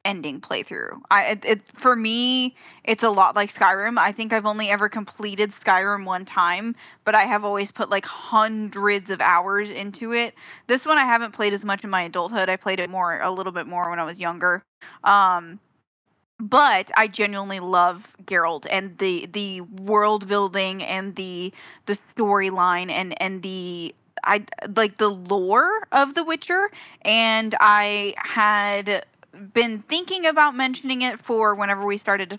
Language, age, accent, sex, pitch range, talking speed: English, 10-29, American, female, 190-225 Hz, 170 wpm